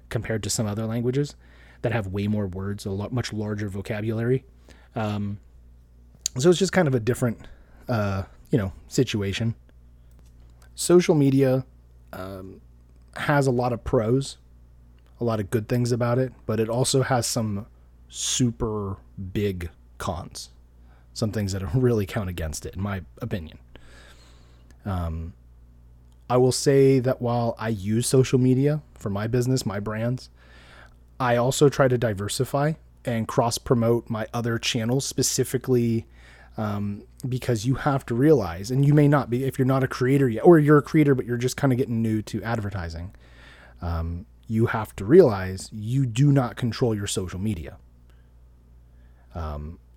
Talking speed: 155 wpm